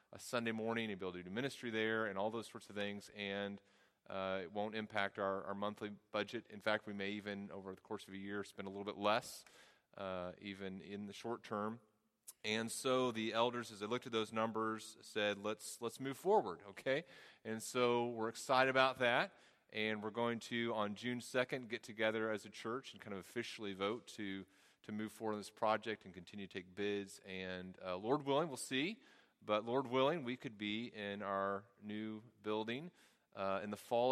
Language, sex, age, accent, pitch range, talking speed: English, male, 30-49, American, 95-115 Hz, 205 wpm